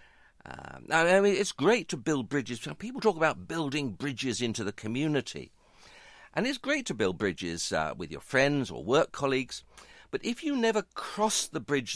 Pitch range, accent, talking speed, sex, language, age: 125-190 Hz, British, 180 wpm, male, English, 50-69